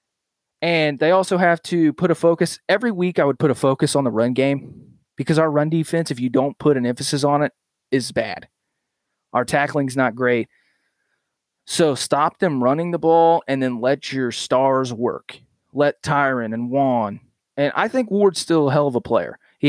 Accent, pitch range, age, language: American, 130-160 Hz, 30-49, English